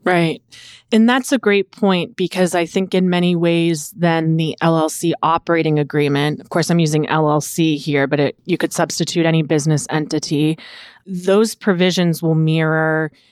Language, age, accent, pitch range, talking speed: English, 30-49, American, 155-175 Hz, 160 wpm